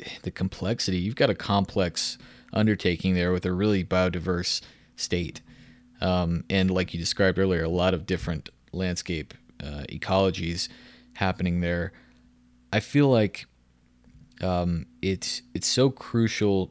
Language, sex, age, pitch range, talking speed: English, male, 30-49, 85-105 Hz, 130 wpm